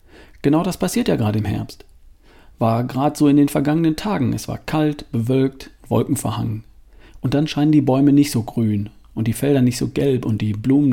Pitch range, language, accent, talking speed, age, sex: 110-145 Hz, German, German, 205 wpm, 50-69, male